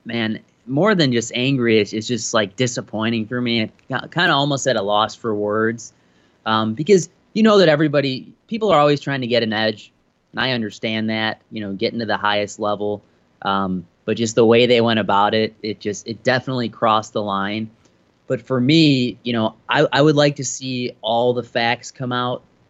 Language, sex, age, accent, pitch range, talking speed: English, male, 20-39, American, 110-125 Hz, 200 wpm